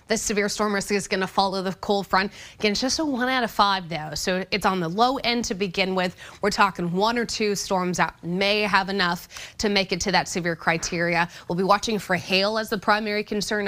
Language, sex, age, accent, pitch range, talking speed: English, female, 20-39, American, 175-220 Hz, 240 wpm